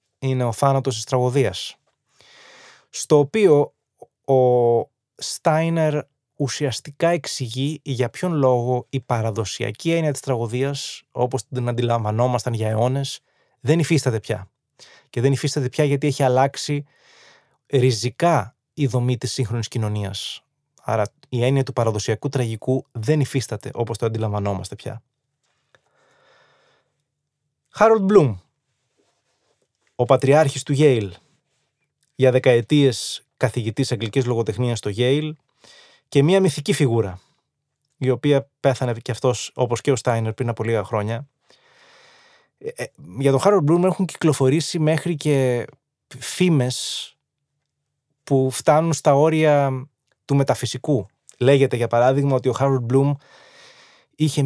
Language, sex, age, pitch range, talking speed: Greek, male, 20-39, 125-145 Hz, 115 wpm